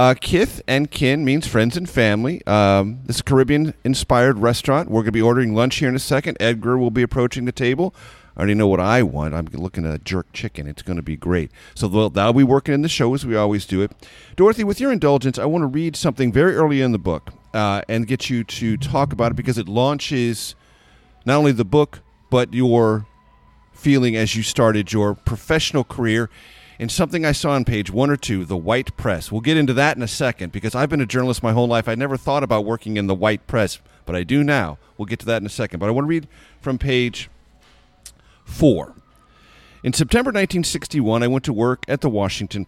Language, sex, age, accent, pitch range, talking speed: English, male, 40-59, American, 105-140 Hz, 230 wpm